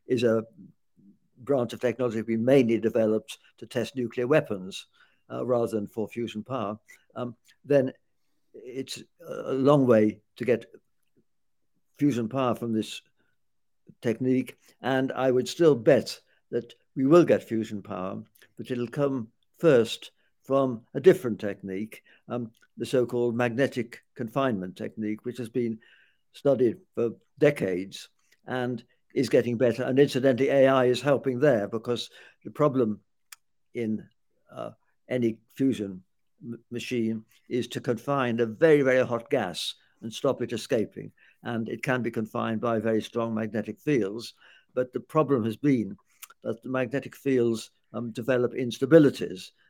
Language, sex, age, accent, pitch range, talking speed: English, male, 60-79, British, 110-130 Hz, 140 wpm